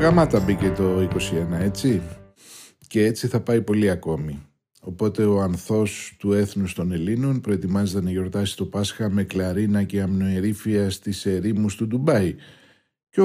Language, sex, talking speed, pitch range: Greek, male, 145 wpm, 95-120 Hz